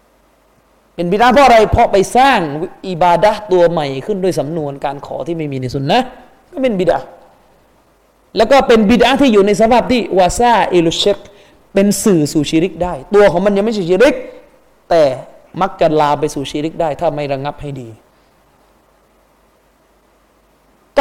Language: Thai